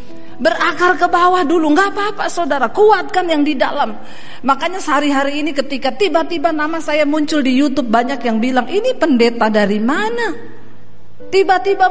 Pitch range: 250-330 Hz